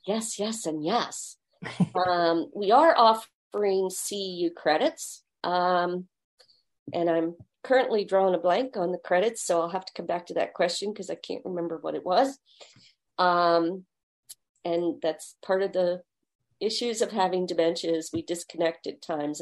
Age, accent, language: 40-59, American, English